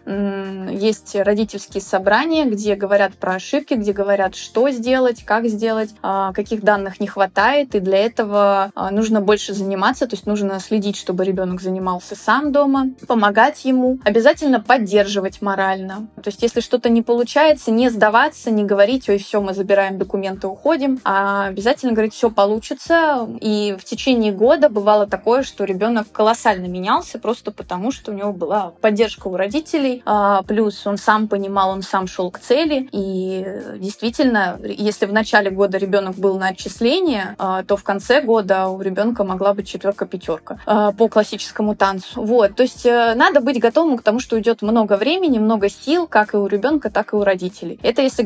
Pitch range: 195-235 Hz